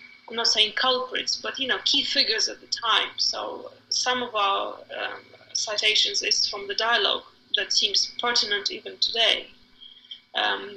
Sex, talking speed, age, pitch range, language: female, 155 wpm, 20-39, 220-265 Hz, English